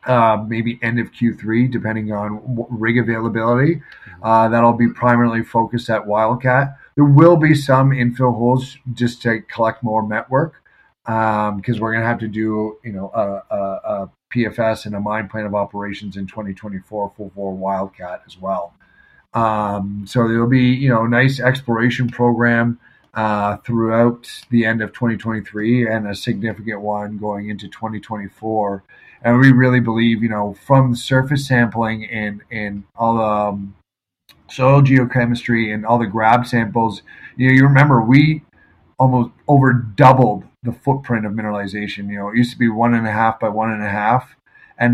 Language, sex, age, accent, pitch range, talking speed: English, male, 40-59, American, 105-125 Hz, 165 wpm